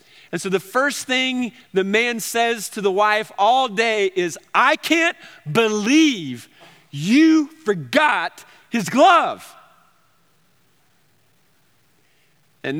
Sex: male